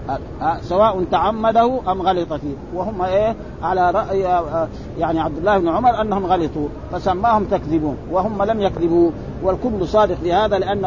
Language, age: Arabic, 50-69